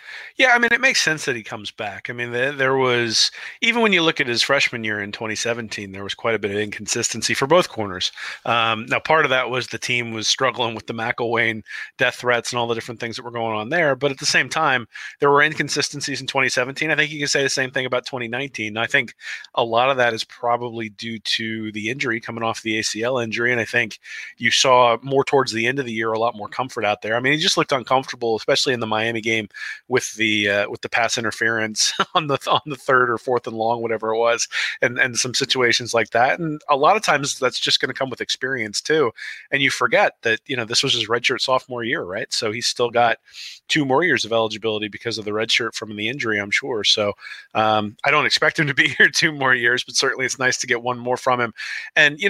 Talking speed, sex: 250 wpm, male